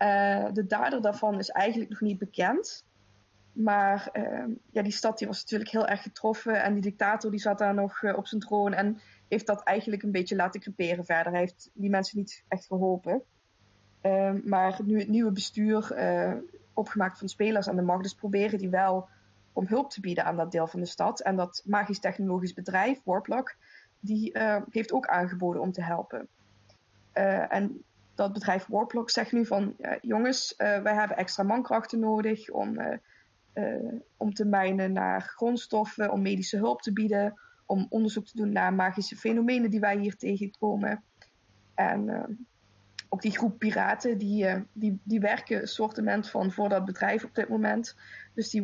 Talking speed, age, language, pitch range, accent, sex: 180 wpm, 20-39, Dutch, 190-220 Hz, Dutch, female